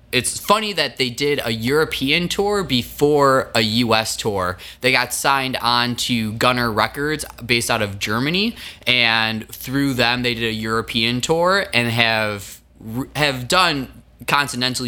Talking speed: 145 wpm